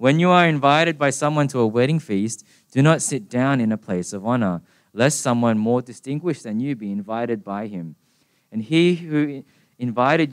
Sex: male